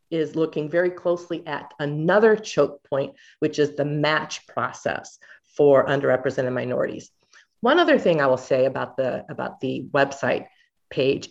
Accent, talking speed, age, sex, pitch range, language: American, 150 wpm, 40-59, female, 150-180 Hz, English